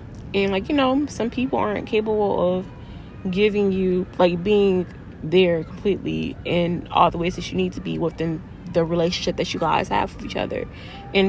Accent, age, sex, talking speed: American, 20-39, female, 185 wpm